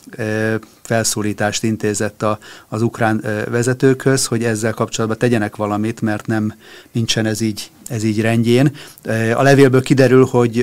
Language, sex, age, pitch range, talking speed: Hungarian, male, 30-49, 110-120 Hz, 125 wpm